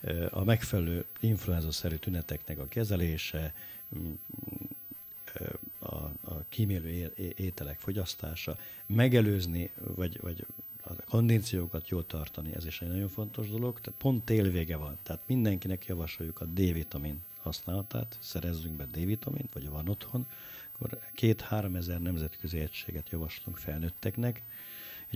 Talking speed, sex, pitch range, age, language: 115 wpm, male, 80-110 Hz, 50-69, Hungarian